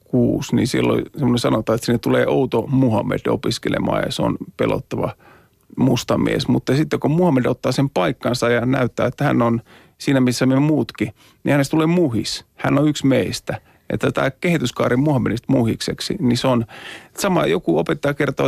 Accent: native